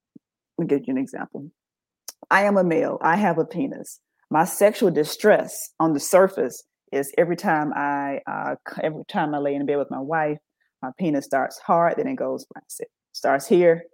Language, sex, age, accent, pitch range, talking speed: English, female, 30-49, American, 140-175 Hz, 190 wpm